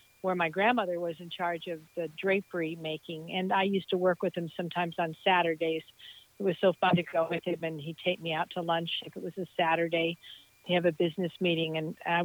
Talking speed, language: 230 wpm, English